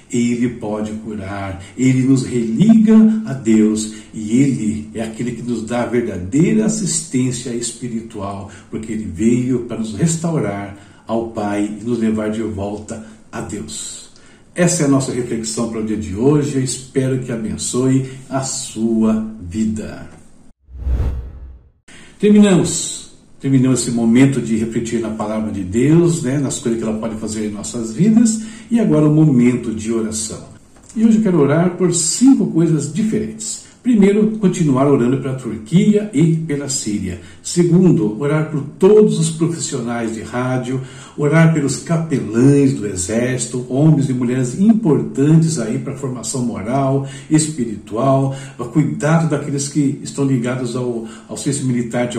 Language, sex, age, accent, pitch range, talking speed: Portuguese, male, 60-79, Brazilian, 110-155 Hz, 145 wpm